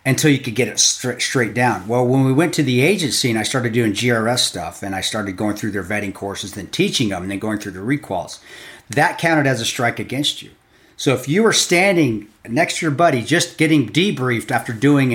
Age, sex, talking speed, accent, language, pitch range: 40-59, male, 235 wpm, American, English, 110-145 Hz